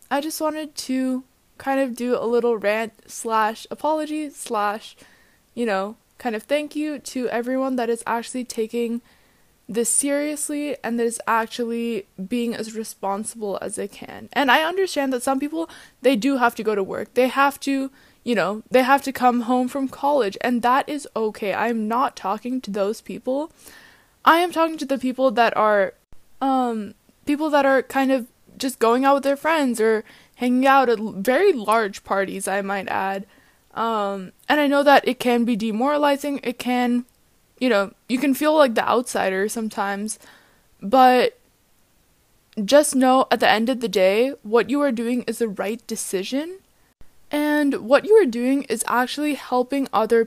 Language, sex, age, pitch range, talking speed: English, female, 10-29, 225-275 Hz, 175 wpm